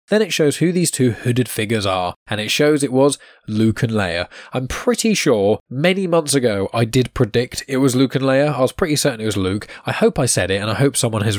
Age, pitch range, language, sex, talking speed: 10-29, 105-135 Hz, English, male, 255 wpm